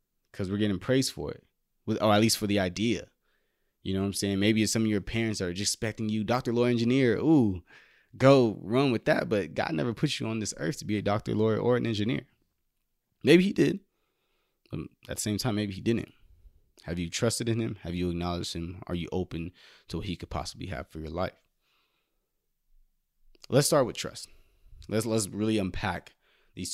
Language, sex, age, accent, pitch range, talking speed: English, male, 20-39, American, 90-115 Hz, 205 wpm